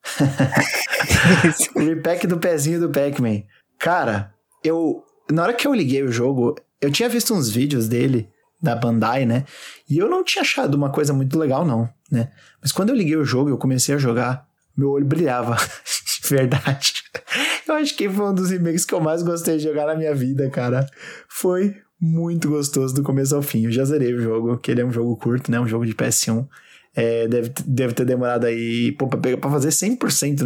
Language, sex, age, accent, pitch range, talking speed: Portuguese, male, 20-39, Brazilian, 125-160 Hz, 200 wpm